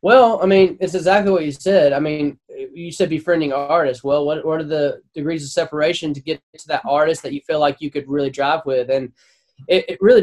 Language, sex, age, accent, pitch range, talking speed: English, male, 10-29, American, 150-195 Hz, 235 wpm